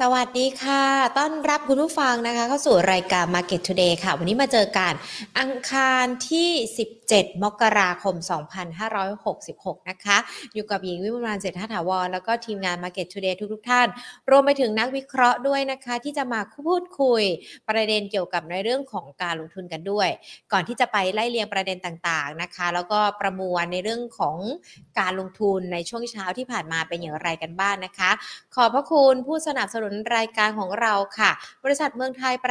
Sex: female